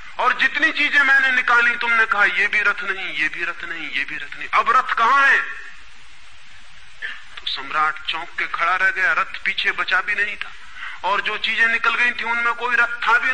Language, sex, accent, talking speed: Hindi, male, native, 205 wpm